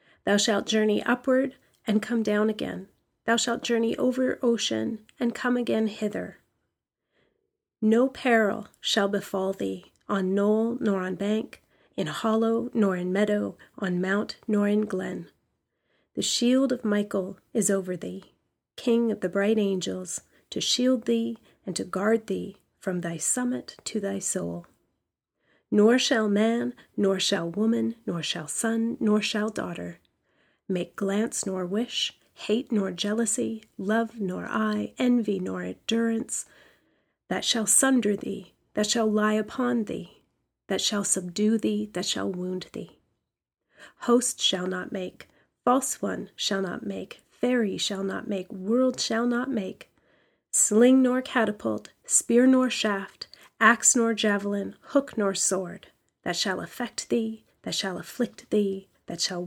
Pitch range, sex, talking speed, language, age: 195-235 Hz, female, 145 wpm, English, 30-49